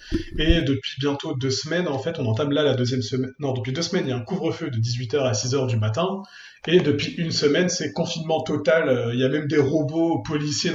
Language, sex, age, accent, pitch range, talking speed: French, male, 30-49, French, 125-160 Hz, 235 wpm